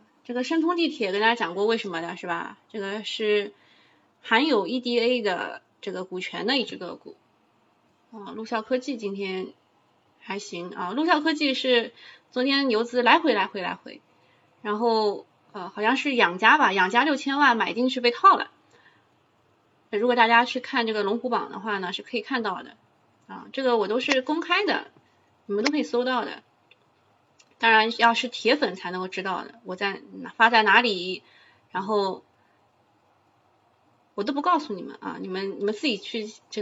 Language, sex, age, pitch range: Chinese, female, 20-39, 200-255 Hz